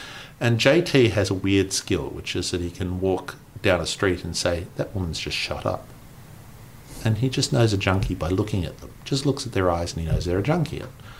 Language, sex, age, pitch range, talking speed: English, male, 50-69, 95-125 Hz, 230 wpm